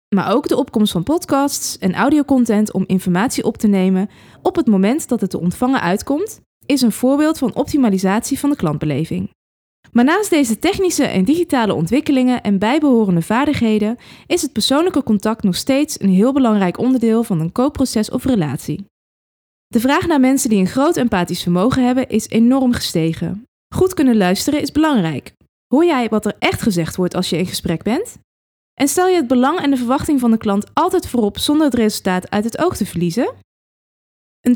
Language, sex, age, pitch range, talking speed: Dutch, female, 20-39, 190-275 Hz, 185 wpm